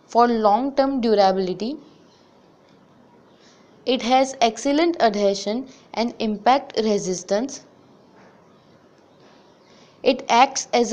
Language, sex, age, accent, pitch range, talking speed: English, female, 20-39, Indian, 210-265 Hz, 75 wpm